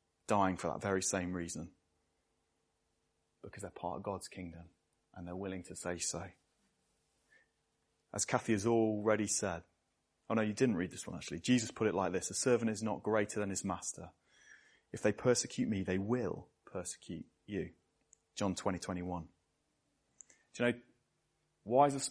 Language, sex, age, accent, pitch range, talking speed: English, male, 30-49, British, 90-120 Hz, 170 wpm